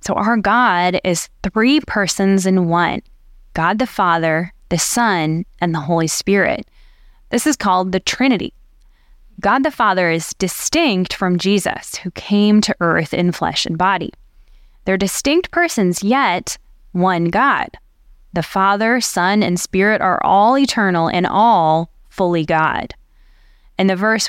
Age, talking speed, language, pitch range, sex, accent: 10-29, 145 wpm, English, 175-220 Hz, female, American